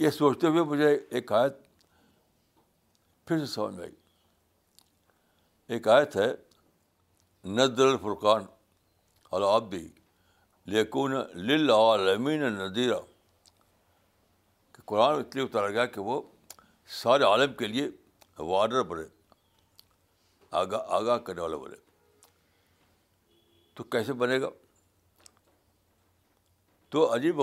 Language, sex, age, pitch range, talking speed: Urdu, male, 60-79, 90-115 Hz, 95 wpm